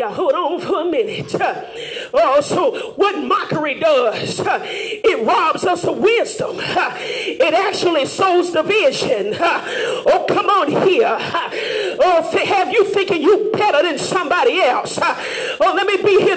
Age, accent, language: 40-59, American, English